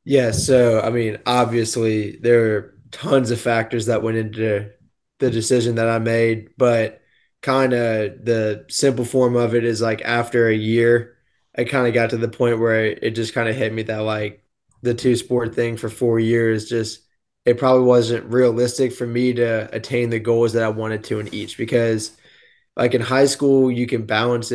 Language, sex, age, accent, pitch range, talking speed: English, male, 20-39, American, 115-125 Hz, 195 wpm